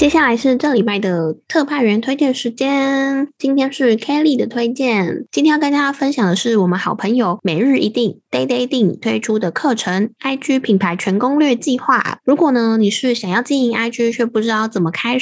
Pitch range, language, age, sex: 195-250 Hz, Chinese, 10-29, female